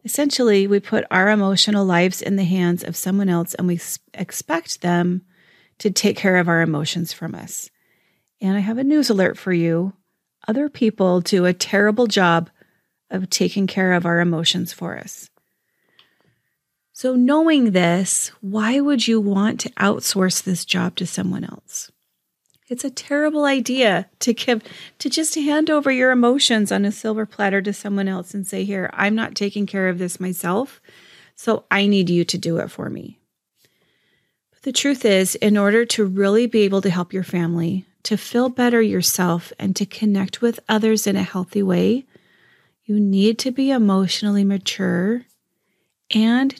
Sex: female